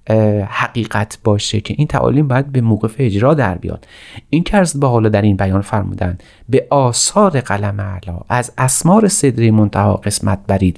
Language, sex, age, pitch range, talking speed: Persian, male, 40-59, 100-135 Hz, 165 wpm